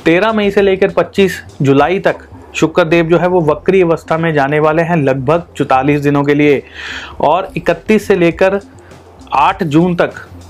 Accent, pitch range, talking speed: native, 145-180 Hz, 165 wpm